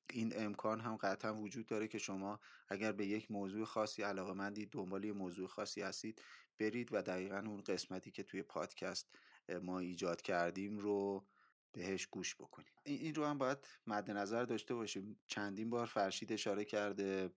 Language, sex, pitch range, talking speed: Persian, male, 100-115 Hz, 160 wpm